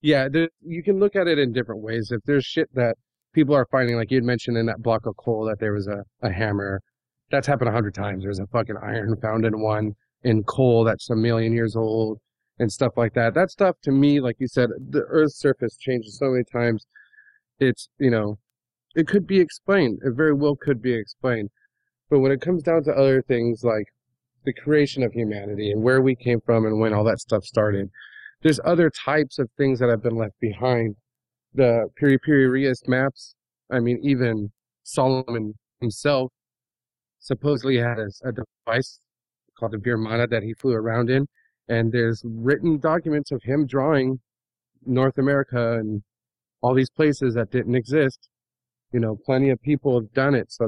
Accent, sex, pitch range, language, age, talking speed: American, male, 115-140 Hz, English, 30-49, 190 wpm